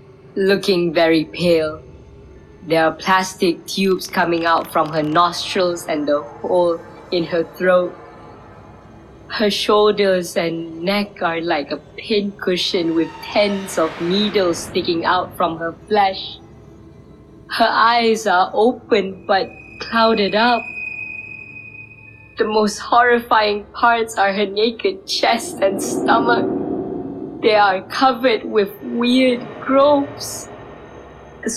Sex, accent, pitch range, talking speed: female, Malaysian, 160-215 Hz, 115 wpm